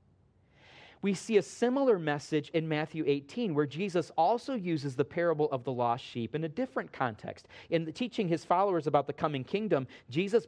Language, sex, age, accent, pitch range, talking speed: English, male, 40-59, American, 135-200 Hz, 175 wpm